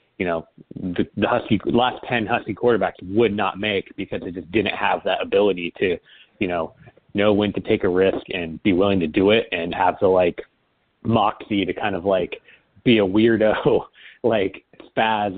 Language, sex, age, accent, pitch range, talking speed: English, male, 30-49, American, 100-120 Hz, 185 wpm